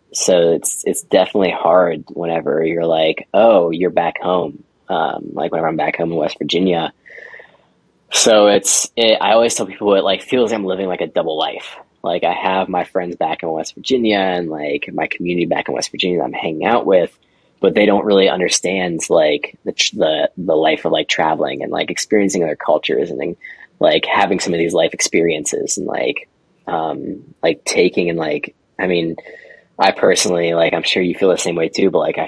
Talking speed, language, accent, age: 205 wpm, English, American, 20-39